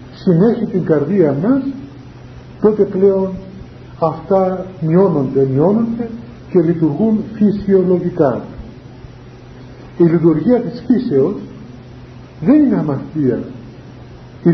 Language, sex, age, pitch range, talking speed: Greek, male, 50-69, 135-195 Hz, 80 wpm